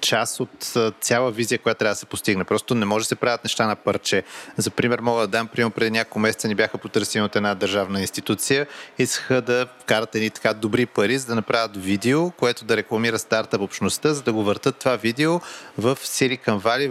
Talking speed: 205 wpm